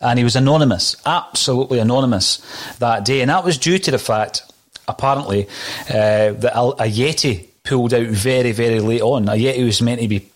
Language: English